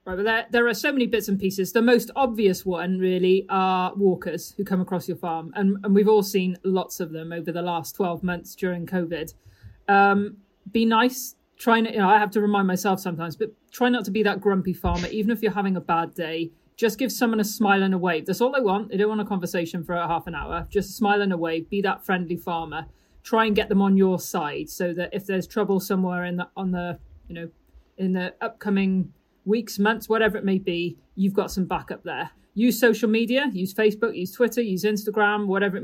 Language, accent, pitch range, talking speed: English, British, 180-210 Hz, 235 wpm